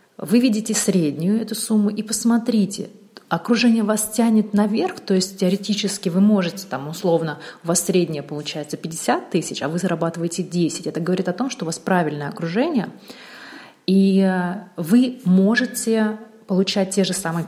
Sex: female